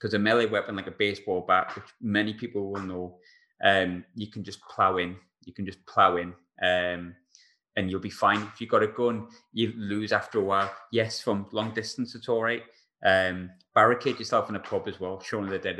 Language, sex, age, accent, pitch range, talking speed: English, male, 20-39, British, 90-110 Hz, 215 wpm